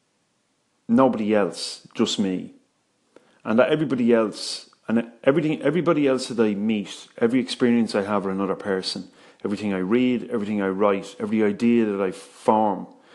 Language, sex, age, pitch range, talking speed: English, male, 30-49, 100-120 Hz, 145 wpm